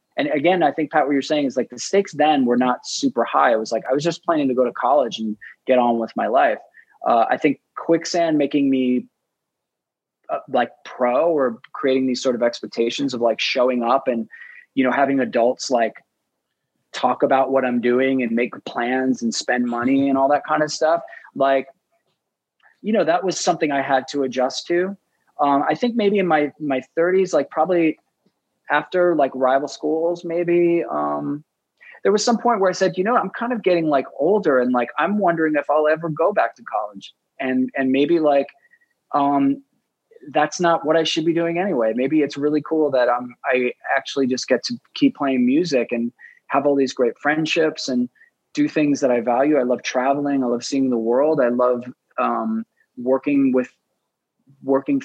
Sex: male